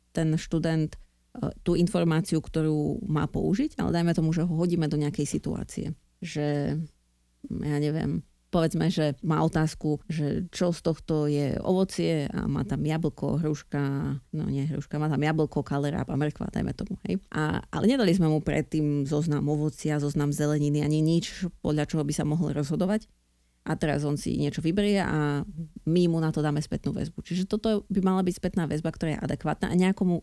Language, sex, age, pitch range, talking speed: Slovak, female, 30-49, 150-175 Hz, 180 wpm